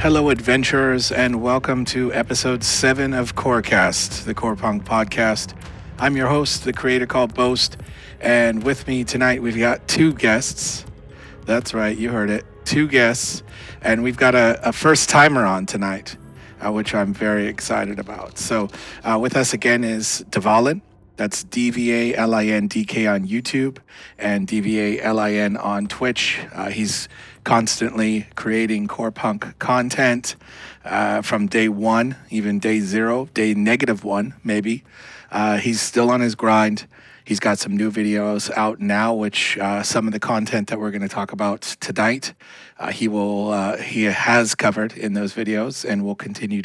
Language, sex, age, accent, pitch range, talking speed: English, male, 30-49, American, 105-125 Hz, 155 wpm